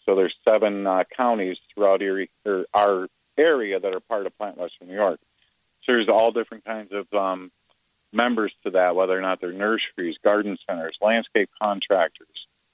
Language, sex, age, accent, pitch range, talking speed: English, male, 40-59, American, 95-115 Hz, 170 wpm